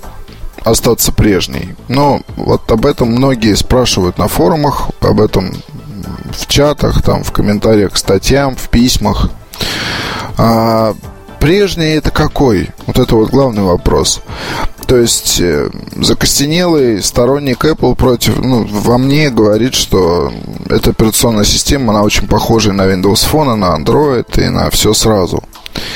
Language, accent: Russian, native